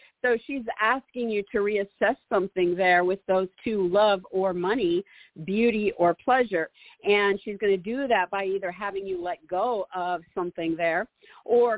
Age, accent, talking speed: 50-69, American, 170 wpm